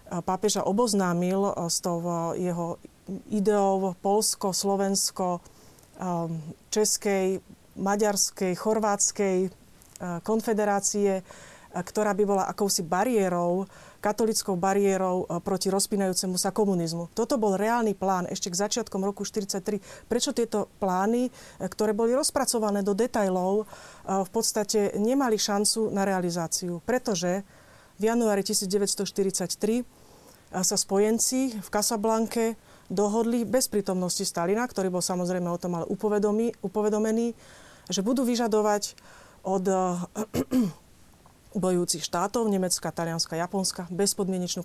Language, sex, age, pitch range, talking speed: Slovak, female, 40-59, 185-215 Hz, 100 wpm